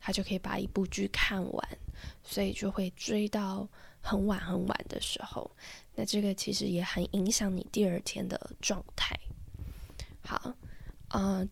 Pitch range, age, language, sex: 185-220 Hz, 10-29, Chinese, female